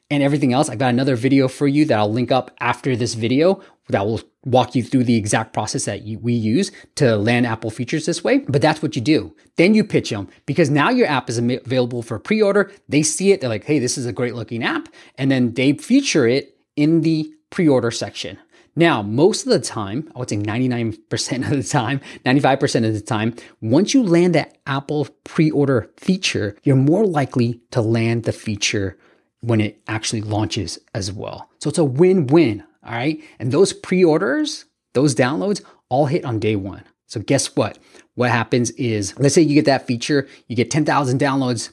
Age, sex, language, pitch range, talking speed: 20-39, male, English, 120-155 Hz, 200 wpm